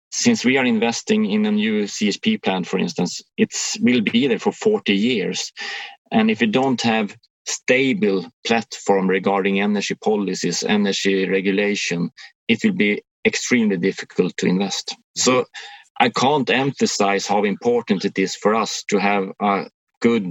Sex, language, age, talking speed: male, English, 30-49, 155 wpm